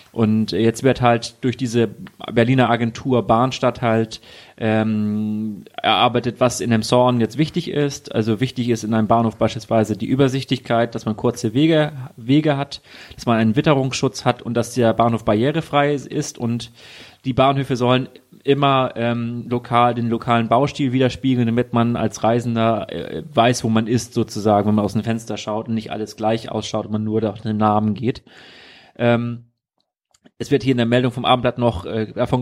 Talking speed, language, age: 180 wpm, German, 30-49